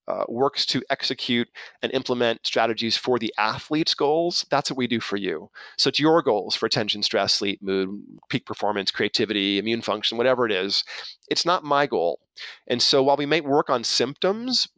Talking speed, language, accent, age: 185 wpm, English, American, 30-49